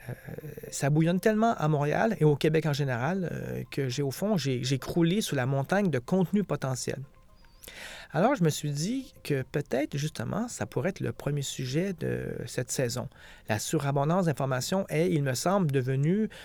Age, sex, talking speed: 40-59, male, 180 wpm